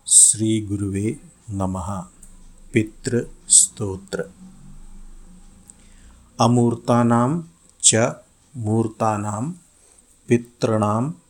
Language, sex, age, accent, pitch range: Hindi, male, 50-69, native, 95-120 Hz